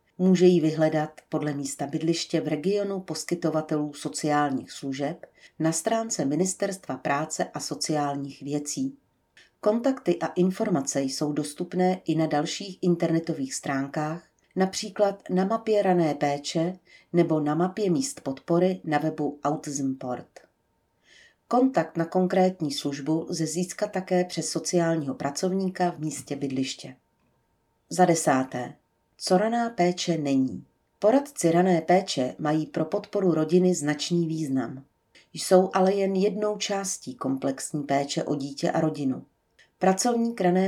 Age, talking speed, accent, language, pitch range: 40-59, 120 wpm, native, Czech, 145-185 Hz